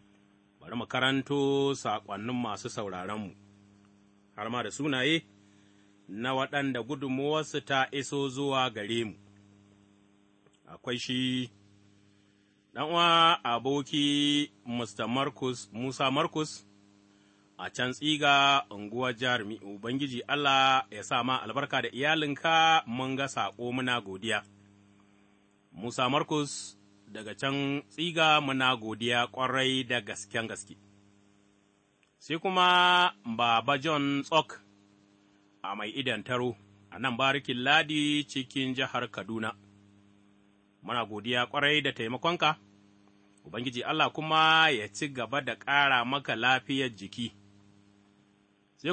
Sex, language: male, English